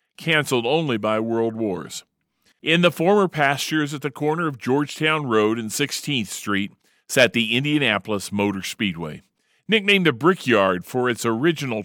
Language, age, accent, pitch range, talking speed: English, 40-59, American, 105-150 Hz, 145 wpm